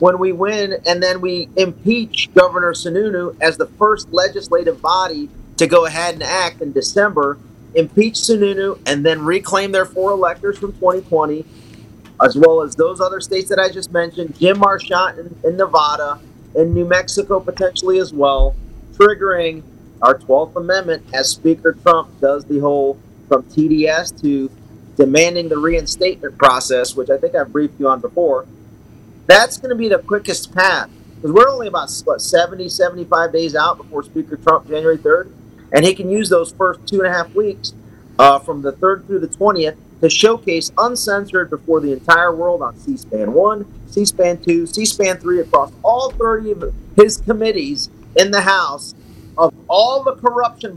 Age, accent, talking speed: 40-59, American, 165 wpm